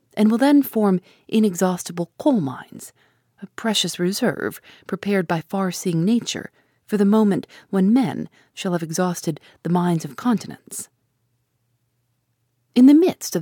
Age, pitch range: 40-59, 155-210 Hz